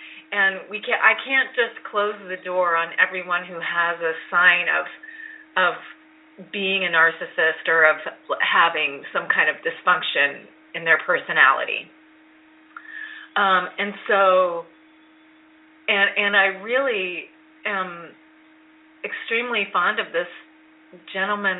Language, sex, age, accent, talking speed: English, female, 30-49, American, 120 wpm